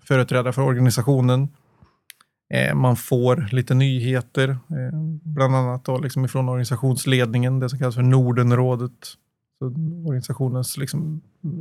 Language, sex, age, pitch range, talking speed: Swedish, male, 30-49, 125-145 Hz, 105 wpm